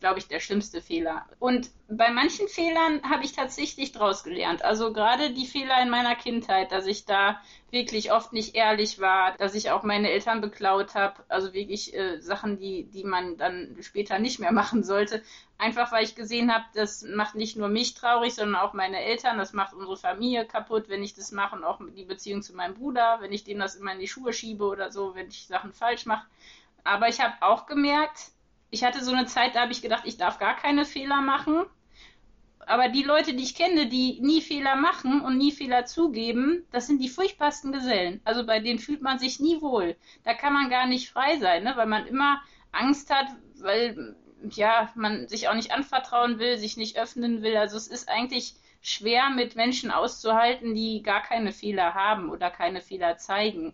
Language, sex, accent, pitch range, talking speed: German, female, German, 205-260 Hz, 205 wpm